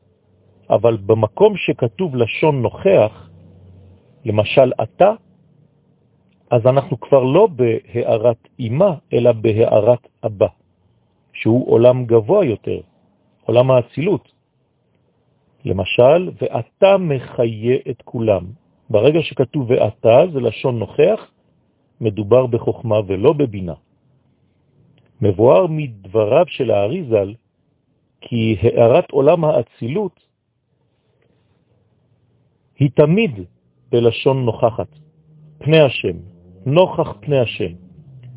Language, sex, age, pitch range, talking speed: French, male, 50-69, 110-150 Hz, 85 wpm